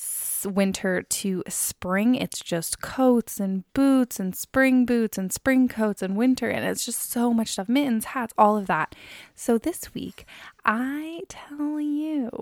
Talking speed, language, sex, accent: 160 wpm, English, female, American